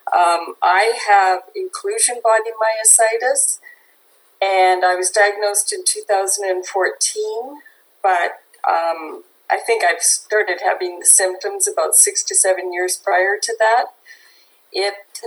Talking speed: 120 wpm